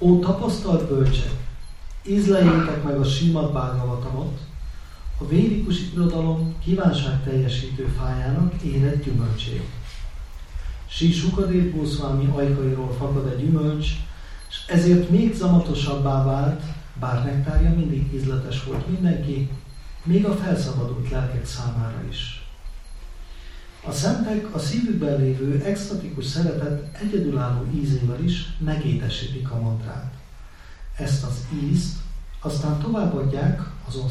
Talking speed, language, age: 105 wpm, Hungarian, 40-59